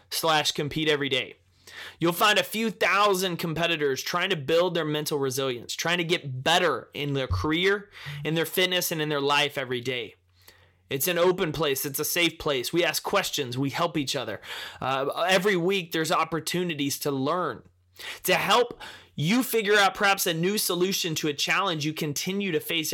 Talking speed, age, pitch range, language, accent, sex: 185 wpm, 20-39, 145-185 Hz, English, American, male